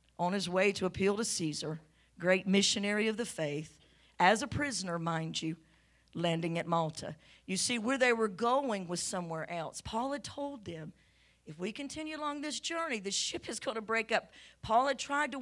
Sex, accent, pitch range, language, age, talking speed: female, American, 165-225 Hz, English, 50-69, 195 wpm